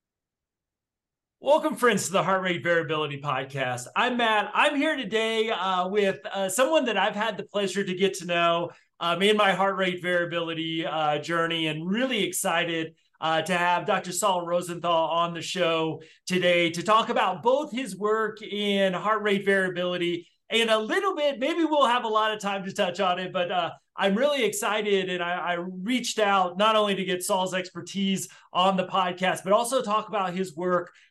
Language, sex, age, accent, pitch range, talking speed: English, male, 30-49, American, 170-210 Hz, 185 wpm